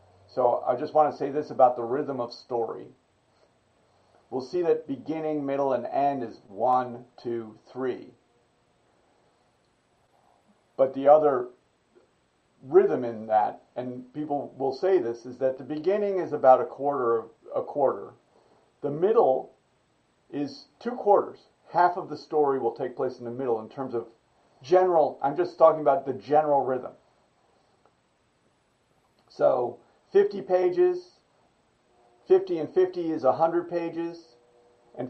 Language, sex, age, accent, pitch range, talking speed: English, male, 50-69, American, 125-165 Hz, 140 wpm